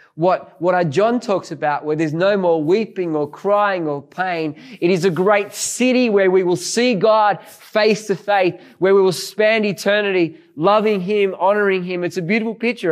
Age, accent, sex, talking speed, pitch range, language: 20-39, Australian, male, 185 wpm, 155-195 Hz, English